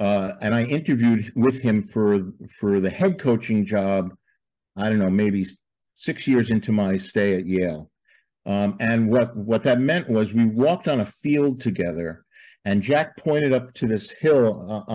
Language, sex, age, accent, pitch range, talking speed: English, male, 50-69, American, 100-125 Hz, 175 wpm